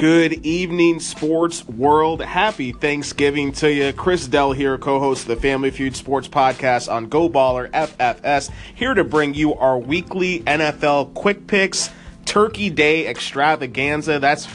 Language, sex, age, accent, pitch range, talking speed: English, male, 30-49, American, 140-160 Hz, 145 wpm